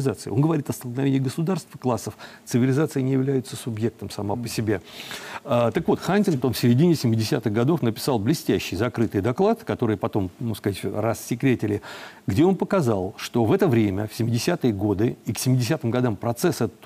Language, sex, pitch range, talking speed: Russian, male, 115-145 Hz, 165 wpm